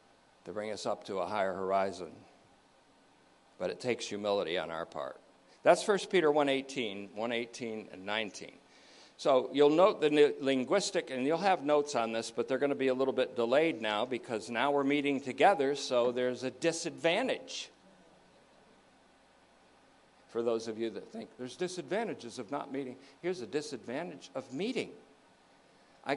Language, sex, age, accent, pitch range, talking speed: English, male, 60-79, American, 115-150 Hz, 165 wpm